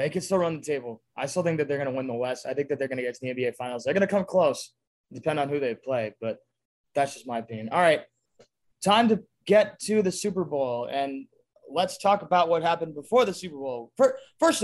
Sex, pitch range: male, 130-185 Hz